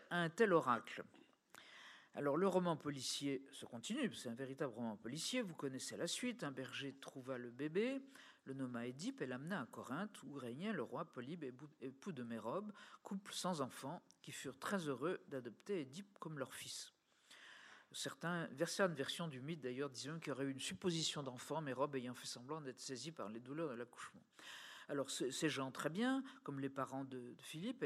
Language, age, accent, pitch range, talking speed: French, 50-69, French, 135-200 Hz, 185 wpm